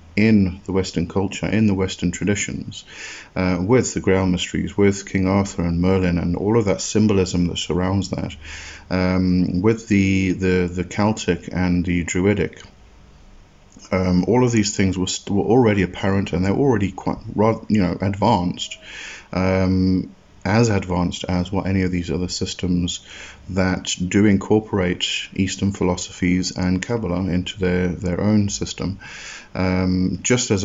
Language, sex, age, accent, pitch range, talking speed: English, male, 30-49, British, 90-100 Hz, 145 wpm